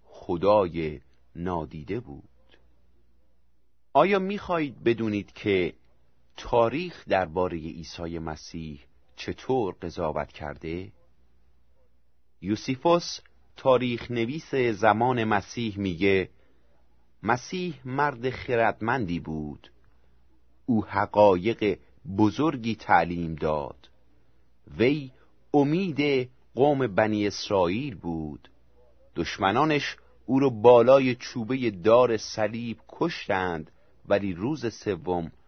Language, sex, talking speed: Persian, male, 80 wpm